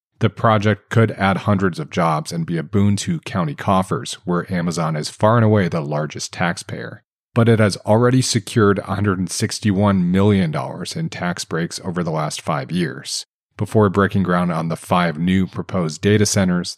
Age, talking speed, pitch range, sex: 30-49, 170 wpm, 95-115 Hz, male